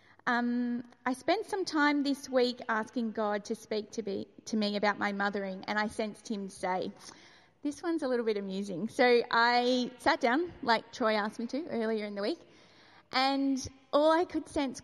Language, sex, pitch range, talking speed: English, female, 230-290 Hz, 190 wpm